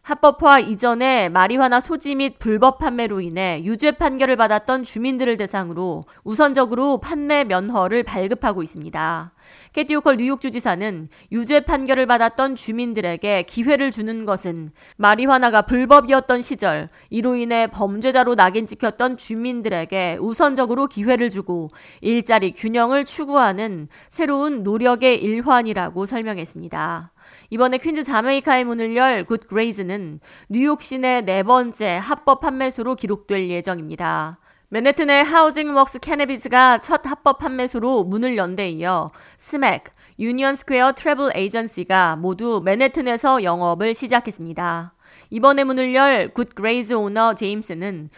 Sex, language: female, Korean